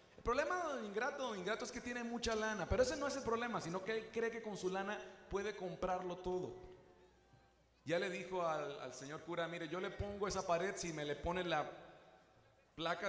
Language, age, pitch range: Spanish, 40-59, 160-240 Hz